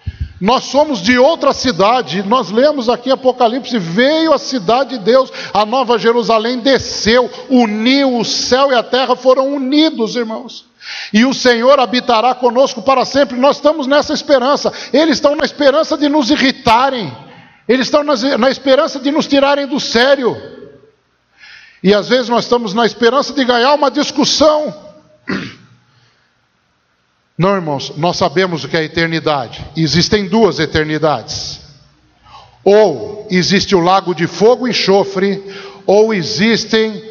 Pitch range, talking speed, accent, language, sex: 180-260 Hz, 140 wpm, Brazilian, Portuguese, male